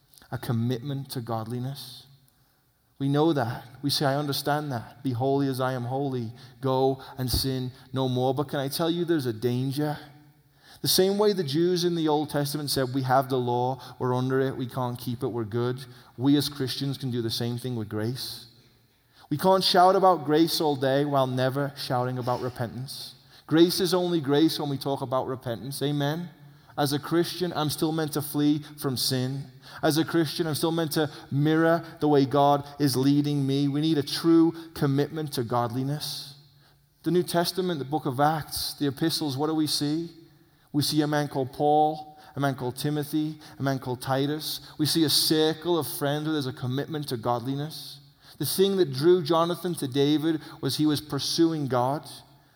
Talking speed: 195 wpm